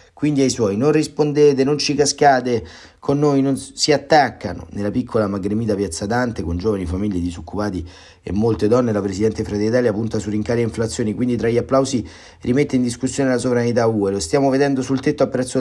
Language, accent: Italian, native